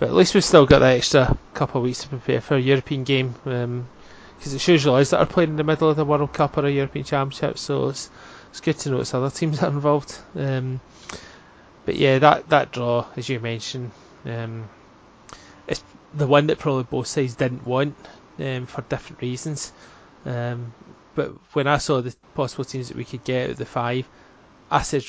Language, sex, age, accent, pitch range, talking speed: English, male, 20-39, British, 125-145 Hz, 210 wpm